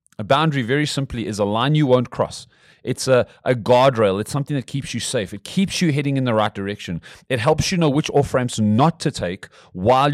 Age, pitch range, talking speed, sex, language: 30-49, 105-135 Hz, 230 wpm, male, English